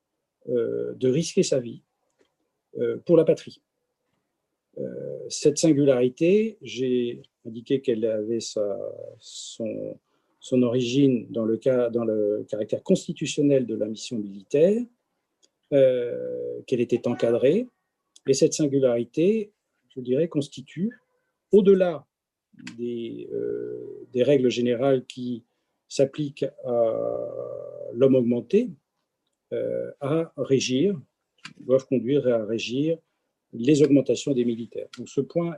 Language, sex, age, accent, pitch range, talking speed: French, male, 50-69, French, 125-175 Hz, 105 wpm